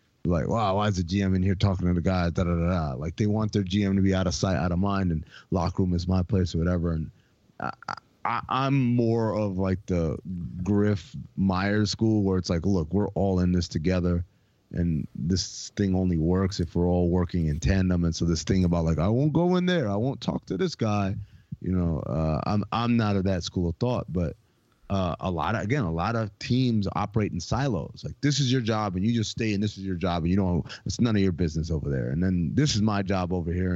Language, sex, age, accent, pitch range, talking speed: English, male, 30-49, American, 90-110 Hz, 250 wpm